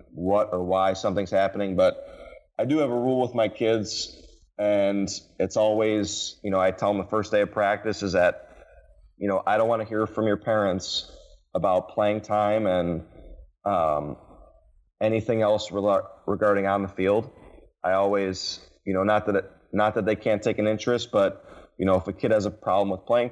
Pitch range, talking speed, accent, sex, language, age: 95-105 Hz, 190 wpm, American, male, English, 30-49